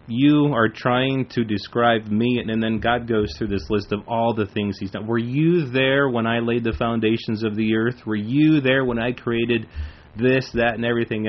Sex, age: male, 30-49